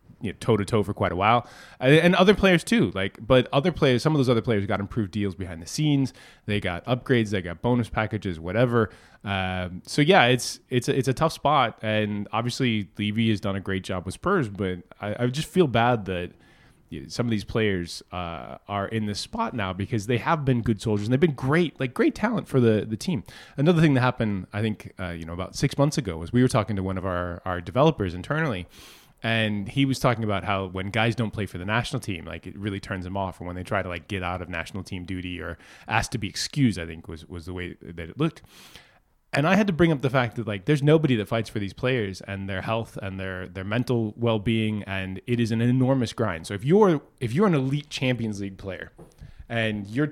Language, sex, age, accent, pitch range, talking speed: English, male, 20-39, American, 95-130 Hz, 235 wpm